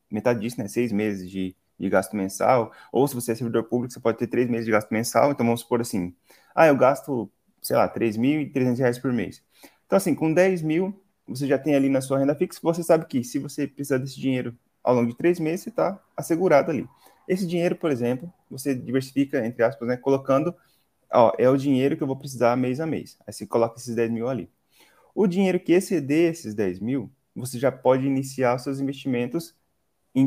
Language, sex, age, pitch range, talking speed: Portuguese, male, 20-39, 120-155 Hz, 215 wpm